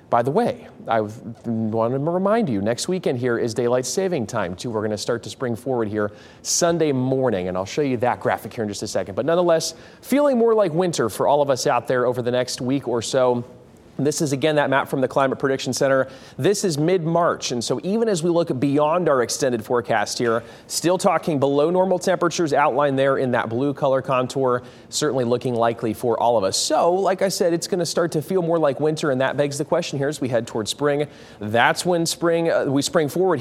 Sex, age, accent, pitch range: male, 30-49, American, 120-165 Hz